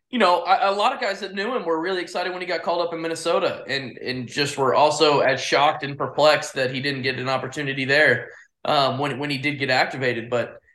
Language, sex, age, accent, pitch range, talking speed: English, male, 20-39, American, 135-165 Hz, 245 wpm